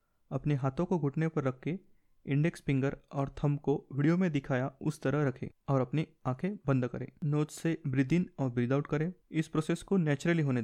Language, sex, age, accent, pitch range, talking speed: Hindi, male, 30-49, native, 135-165 Hz, 190 wpm